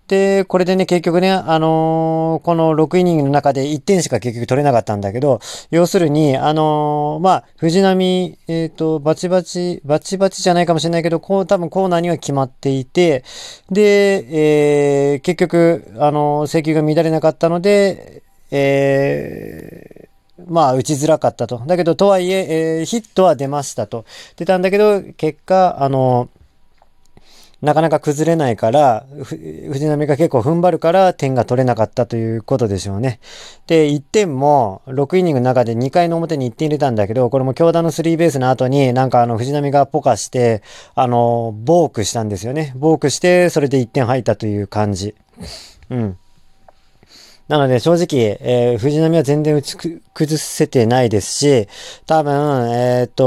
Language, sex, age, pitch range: Japanese, male, 40-59, 125-170 Hz